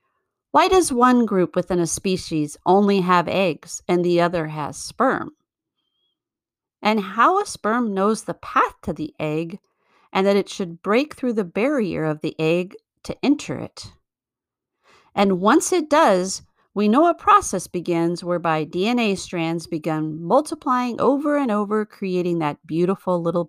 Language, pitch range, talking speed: English, 170-220 Hz, 155 wpm